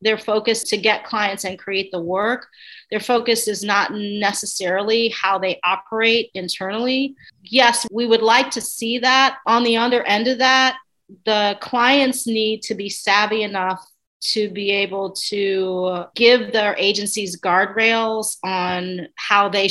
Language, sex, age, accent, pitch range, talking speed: English, female, 40-59, American, 190-225 Hz, 150 wpm